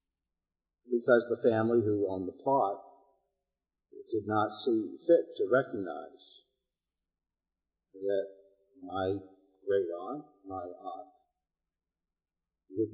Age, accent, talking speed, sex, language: 50-69, American, 95 wpm, male, English